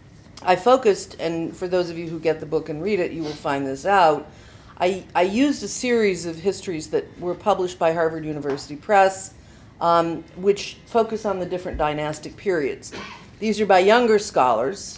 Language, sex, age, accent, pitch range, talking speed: English, female, 50-69, American, 150-195 Hz, 185 wpm